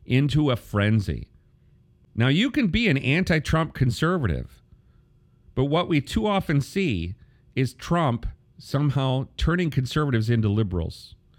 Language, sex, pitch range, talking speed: English, male, 100-135 Hz, 125 wpm